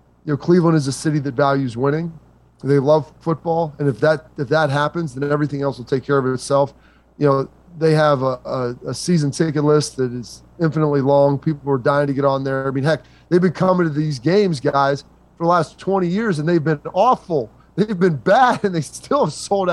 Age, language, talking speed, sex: 30-49, English, 230 wpm, male